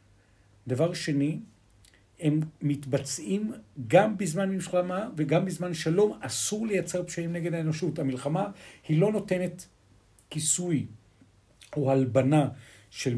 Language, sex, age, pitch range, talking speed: Hebrew, male, 50-69, 110-155 Hz, 105 wpm